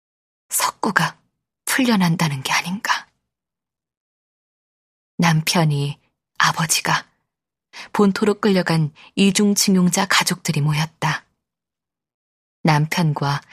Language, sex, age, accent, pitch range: Korean, female, 20-39, native, 150-190 Hz